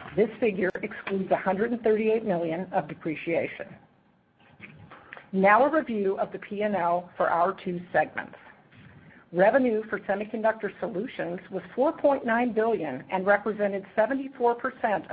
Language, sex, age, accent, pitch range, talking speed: English, female, 50-69, American, 185-230 Hz, 105 wpm